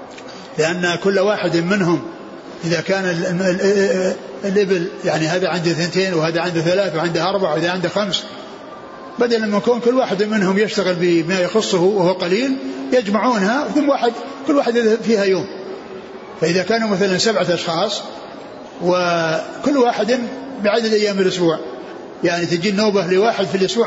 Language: Arabic